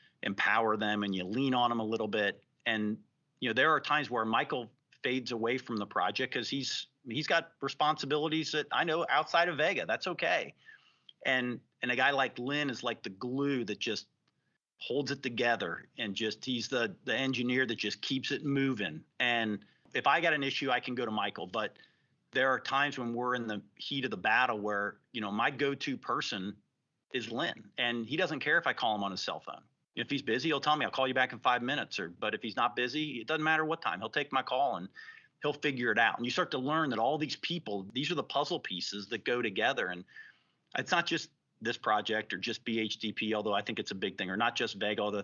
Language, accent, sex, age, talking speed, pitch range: English, American, male, 40-59, 235 wpm, 110-140 Hz